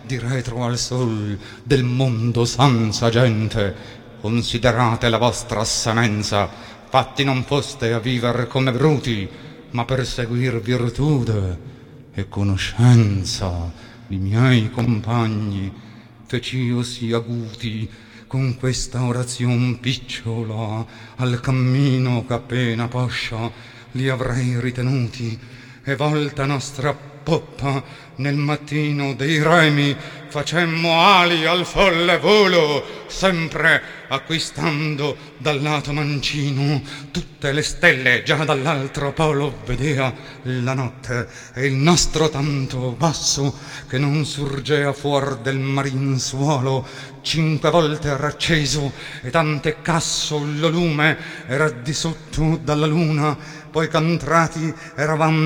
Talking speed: 105 wpm